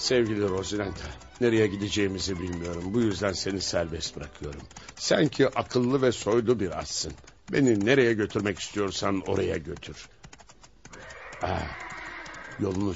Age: 60-79